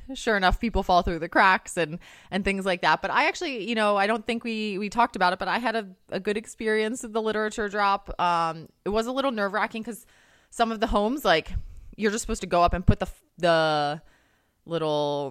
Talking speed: 235 wpm